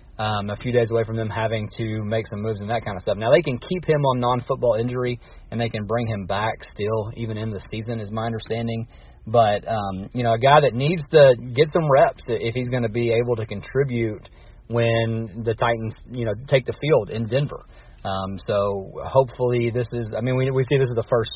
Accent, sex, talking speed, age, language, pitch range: American, male, 235 wpm, 30-49, English, 110-125 Hz